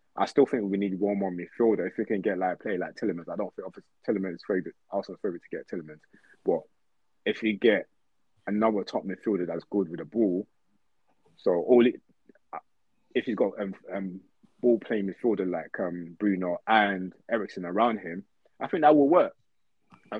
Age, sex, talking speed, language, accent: 20-39, male, 185 wpm, English, British